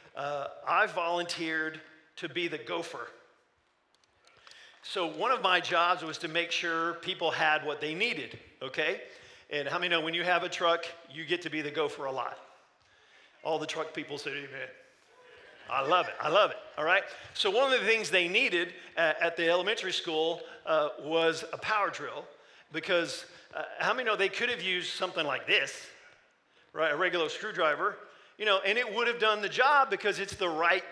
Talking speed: 190 wpm